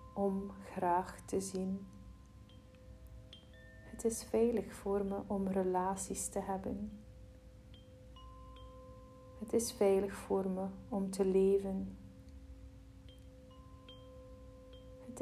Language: Dutch